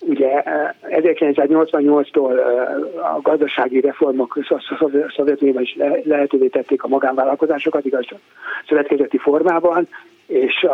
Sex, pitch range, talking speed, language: male, 135-175 Hz, 85 wpm, Hungarian